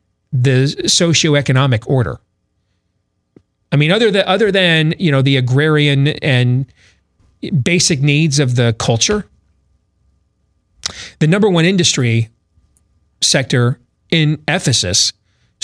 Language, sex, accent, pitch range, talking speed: English, male, American, 100-160 Hz, 100 wpm